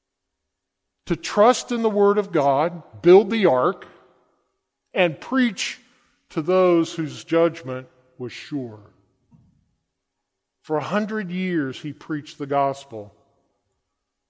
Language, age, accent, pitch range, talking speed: English, 40-59, American, 110-165 Hz, 110 wpm